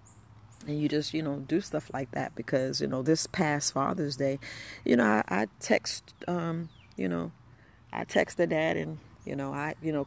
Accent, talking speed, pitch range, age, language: American, 195 wpm, 135-165 Hz, 40-59, English